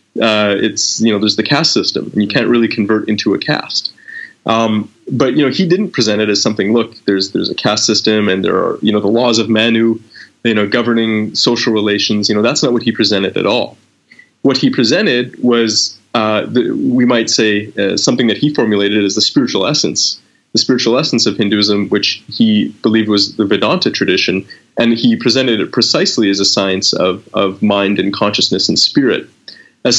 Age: 30-49